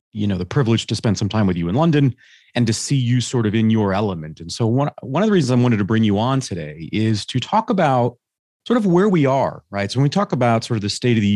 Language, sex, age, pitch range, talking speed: English, male, 30-49, 95-125 Hz, 295 wpm